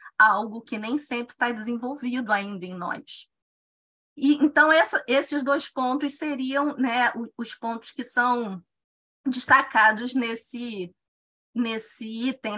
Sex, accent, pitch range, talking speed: female, Brazilian, 240-300 Hz, 115 wpm